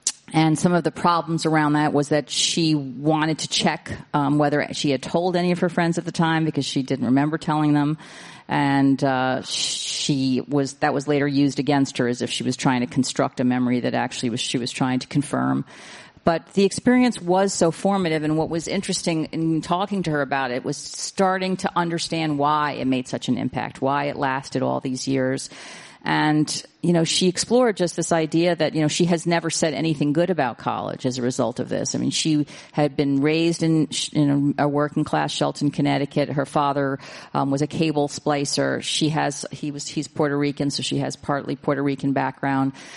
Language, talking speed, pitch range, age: English, 205 wpm, 135-160 Hz, 40-59